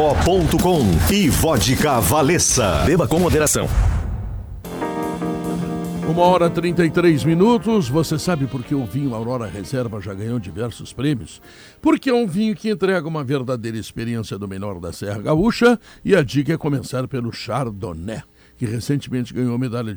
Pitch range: 110-155 Hz